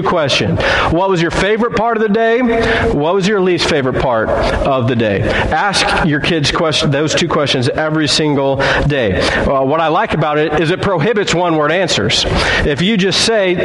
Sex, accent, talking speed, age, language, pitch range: male, American, 180 wpm, 40-59, English, 155-195 Hz